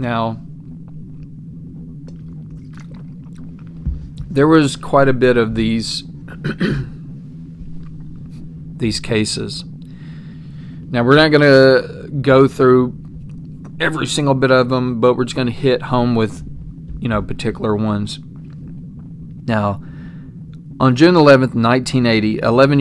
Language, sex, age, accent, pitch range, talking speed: English, male, 40-59, American, 115-150 Hz, 105 wpm